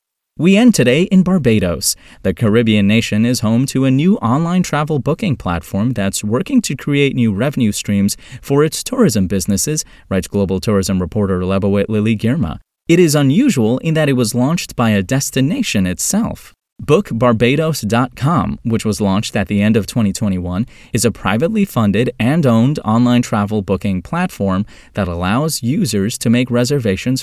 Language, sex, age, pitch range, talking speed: English, male, 30-49, 100-130 Hz, 160 wpm